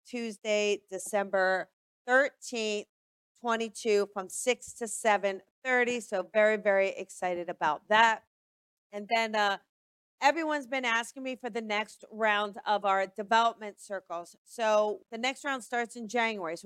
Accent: American